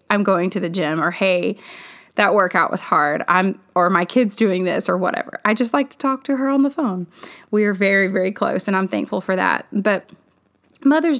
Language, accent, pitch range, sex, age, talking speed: English, American, 175-210 Hz, female, 20-39, 220 wpm